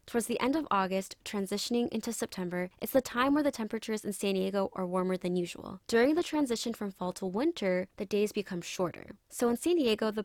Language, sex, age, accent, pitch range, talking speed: English, female, 20-39, American, 190-240 Hz, 215 wpm